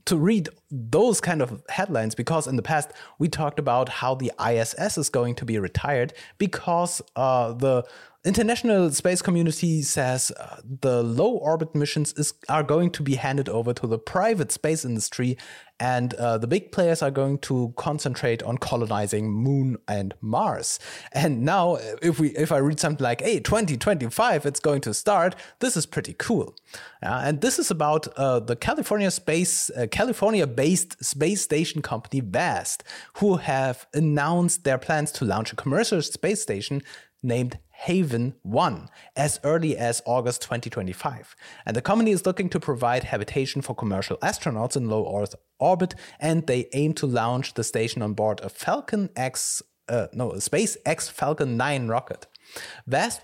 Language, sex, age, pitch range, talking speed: English, male, 30-49, 120-160 Hz, 165 wpm